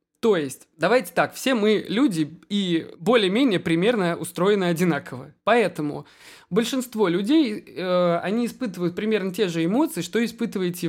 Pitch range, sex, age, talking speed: 160-215 Hz, male, 20-39, 130 wpm